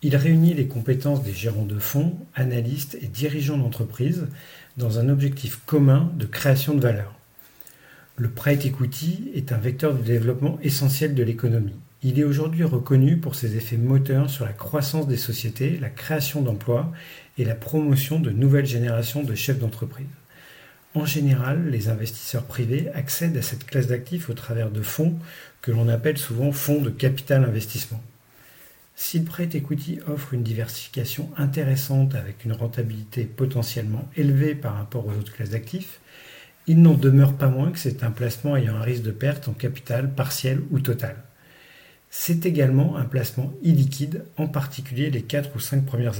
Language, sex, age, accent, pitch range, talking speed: French, male, 40-59, French, 120-145 Hz, 165 wpm